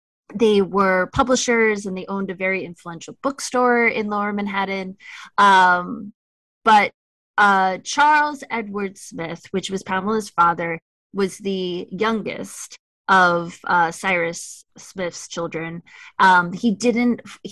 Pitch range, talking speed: 180-225 Hz, 115 wpm